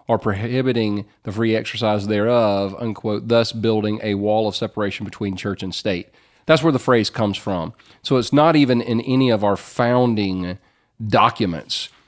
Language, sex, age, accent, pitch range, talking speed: English, male, 40-59, American, 100-120 Hz, 165 wpm